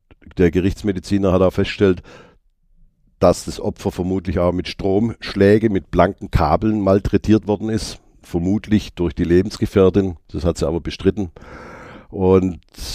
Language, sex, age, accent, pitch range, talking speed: German, male, 50-69, German, 90-105 Hz, 130 wpm